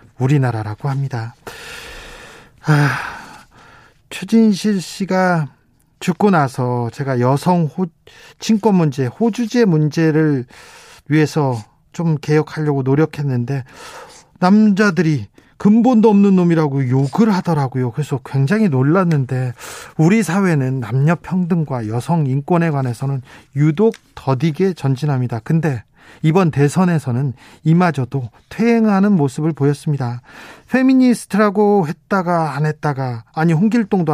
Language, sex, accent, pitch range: Korean, male, native, 135-190 Hz